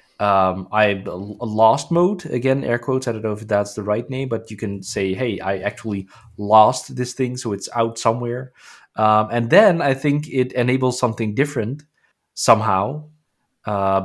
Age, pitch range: 20-39, 105-135 Hz